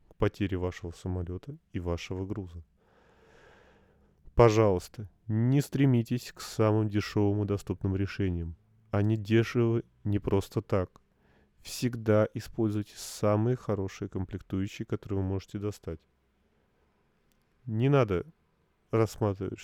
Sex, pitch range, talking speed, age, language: male, 90-110 Hz, 100 wpm, 30-49, Russian